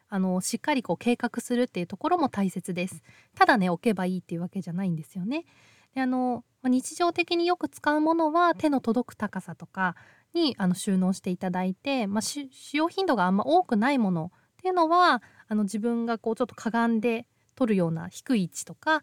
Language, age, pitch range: Japanese, 20-39, 190-285 Hz